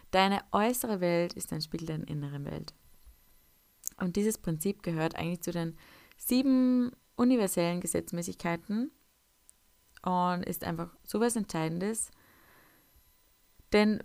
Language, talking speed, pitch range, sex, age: German, 110 wpm, 170-225 Hz, female, 20-39